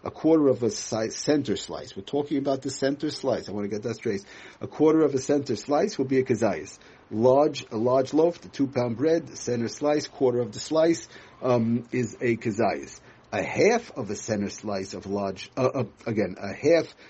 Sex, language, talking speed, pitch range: male, English, 205 wpm, 110-135 Hz